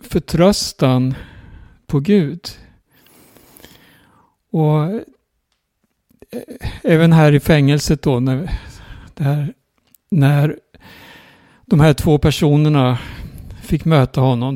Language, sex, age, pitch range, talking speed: Swedish, male, 60-79, 135-165 Hz, 65 wpm